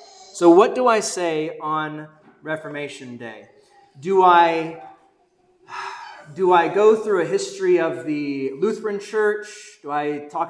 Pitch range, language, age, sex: 150-220 Hz, English, 30-49, male